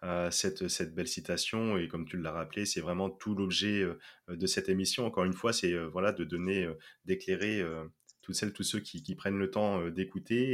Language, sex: French, male